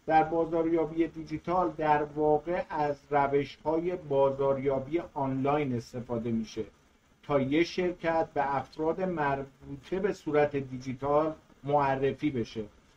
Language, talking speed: Persian, 100 wpm